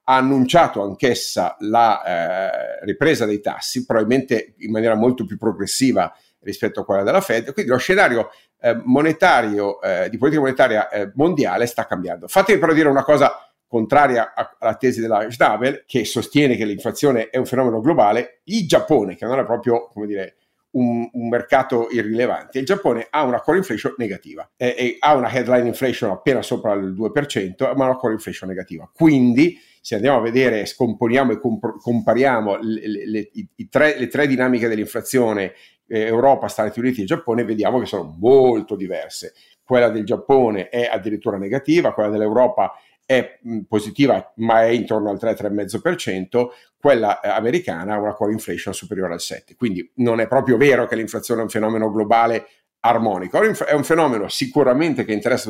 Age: 50-69